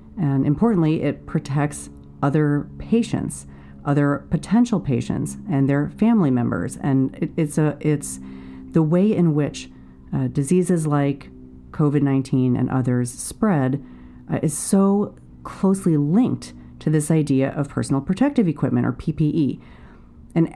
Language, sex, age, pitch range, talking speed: English, female, 40-59, 135-185 Hz, 130 wpm